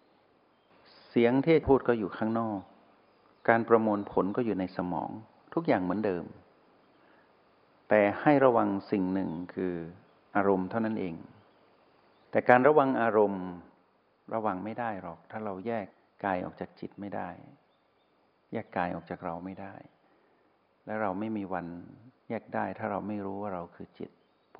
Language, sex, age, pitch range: Thai, male, 60-79, 95-115 Hz